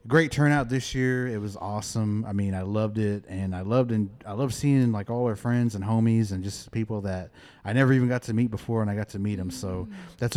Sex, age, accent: male, 30-49, American